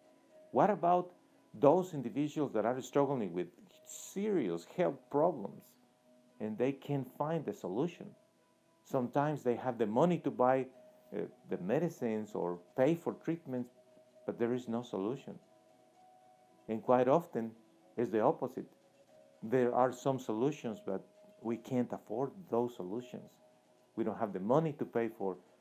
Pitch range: 115-165 Hz